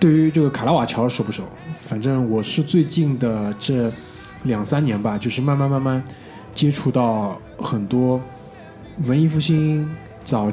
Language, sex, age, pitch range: Chinese, male, 20-39, 120-165 Hz